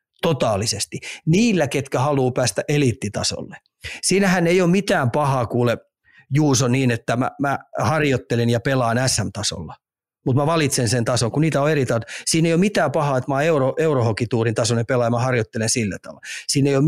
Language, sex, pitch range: Finnish, male, 120-150 Hz